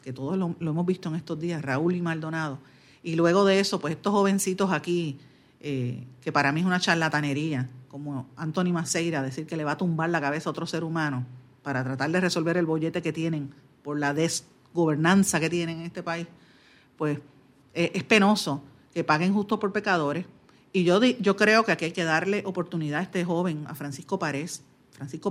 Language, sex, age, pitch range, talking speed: Spanish, female, 50-69, 150-185 Hz, 200 wpm